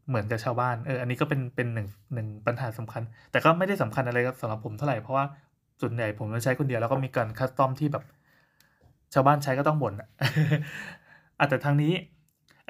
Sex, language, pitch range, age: male, Thai, 120-145 Hz, 20-39